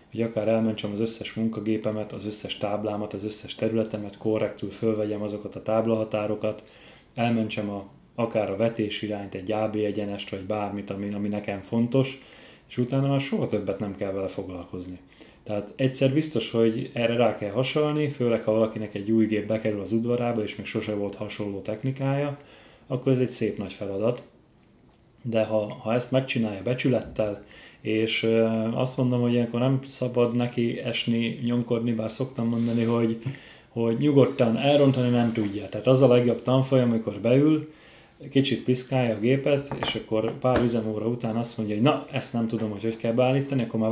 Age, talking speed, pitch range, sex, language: 30-49, 170 wpm, 110-125 Hz, male, Hungarian